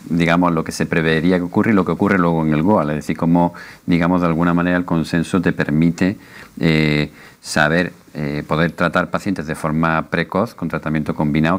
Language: English